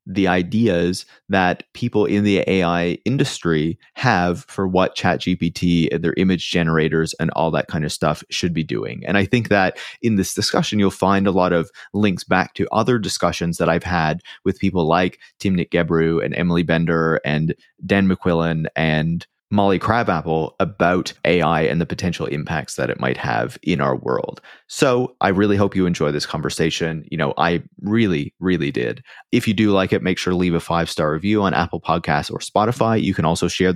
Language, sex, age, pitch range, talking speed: English, male, 30-49, 85-100 Hz, 190 wpm